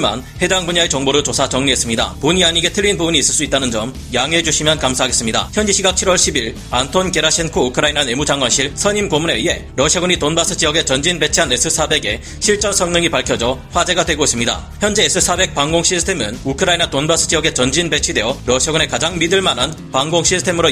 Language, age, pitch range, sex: Korean, 40-59, 145-185 Hz, male